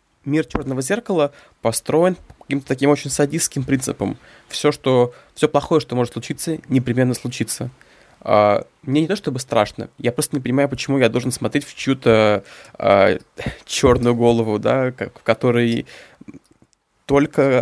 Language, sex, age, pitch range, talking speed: Russian, male, 20-39, 115-140 Hz, 145 wpm